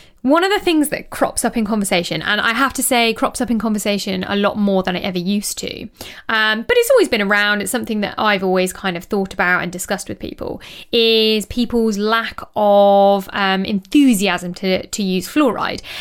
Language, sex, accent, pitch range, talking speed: English, female, British, 195-245 Hz, 205 wpm